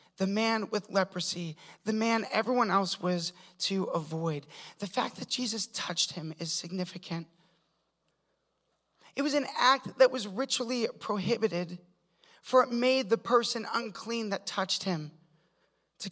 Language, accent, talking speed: English, American, 140 wpm